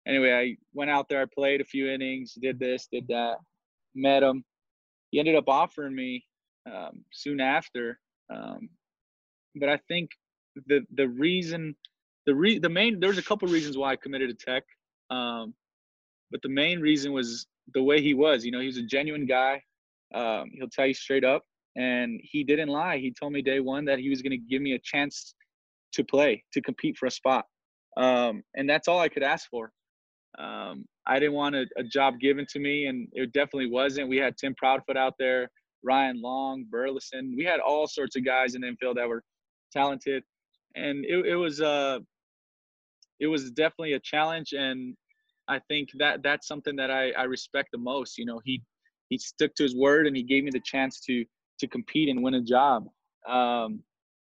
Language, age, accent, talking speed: English, 20-39, American, 200 wpm